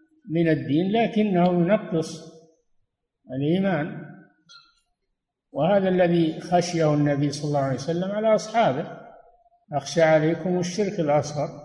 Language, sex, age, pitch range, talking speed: Arabic, male, 60-79, 150-200 Hz, 100 wpm